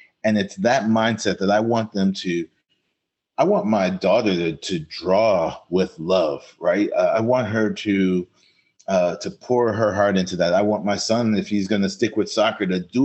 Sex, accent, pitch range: male, American, 100-125 Hz